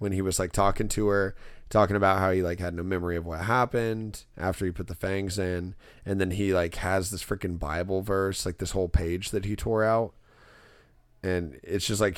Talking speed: 220 wpm